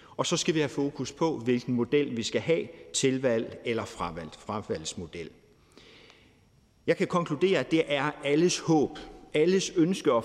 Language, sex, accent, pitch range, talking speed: Danish, male, native, 120-165 Hz, 150 wpm